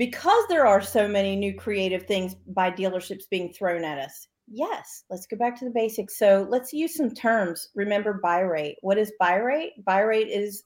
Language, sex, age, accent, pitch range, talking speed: English, female, 40-59, American, 195-285 Hz, 205 wpm